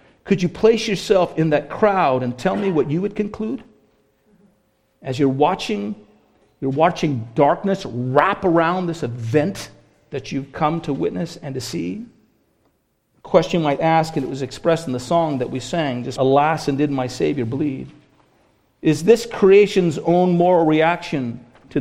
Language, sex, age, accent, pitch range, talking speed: English, male, 50-69, American, 125-165 Hz, 170 wpm